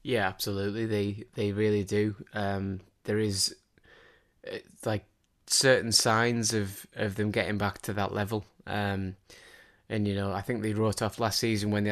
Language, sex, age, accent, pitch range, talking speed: English, male, 20-39, British, 100-110 Hz, 165 wpm